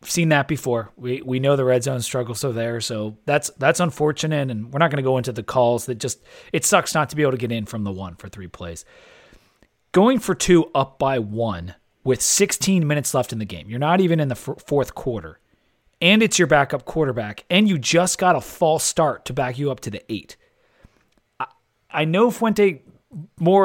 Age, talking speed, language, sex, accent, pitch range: 40-59, 220 wpm, English, male, American, 125-180 Hz